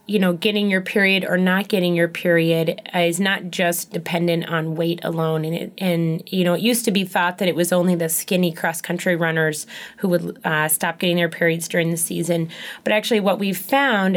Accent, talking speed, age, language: American, 215 wpm, 20-39, English